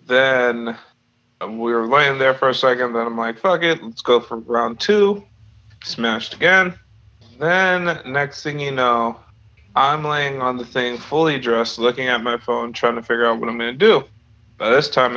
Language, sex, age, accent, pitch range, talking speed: English, male, 30-49, American, 115-135 Hz, 185 wpm